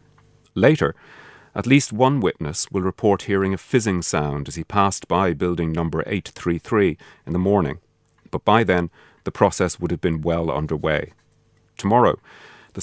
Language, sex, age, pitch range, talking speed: English, male, 40-59, 85-100 Hz, 155 wpm